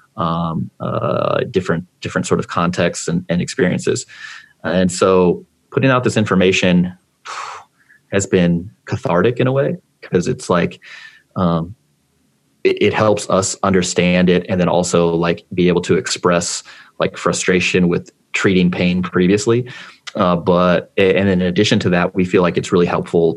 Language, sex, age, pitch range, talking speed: English, male, 30-49, 85-95 Hz, 155 wpm